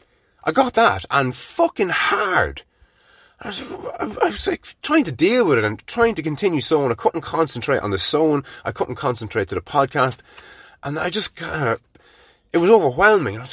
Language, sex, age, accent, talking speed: English, male, 30-49, British, 190 wpm